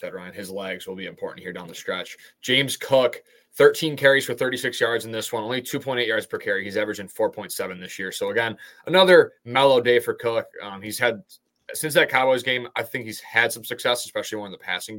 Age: 20-39